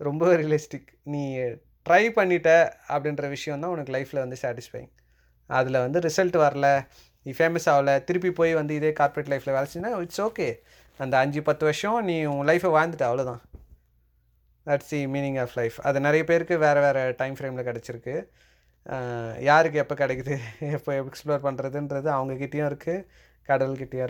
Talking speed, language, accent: 145 wpm, Tamil, native